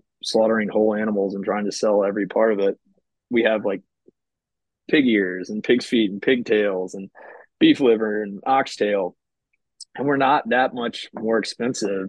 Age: 20-39